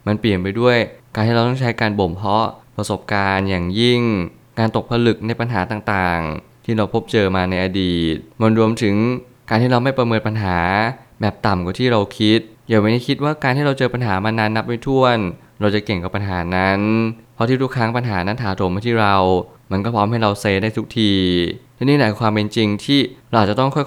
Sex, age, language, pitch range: male, 20-39, Thai, 100-120 Hz